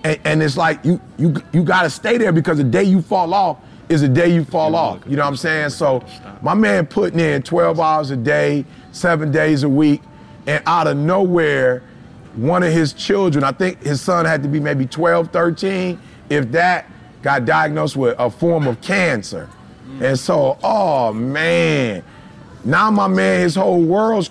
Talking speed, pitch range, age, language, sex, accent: 195 wpm, 150-190 Hz, 30-49, English, male, American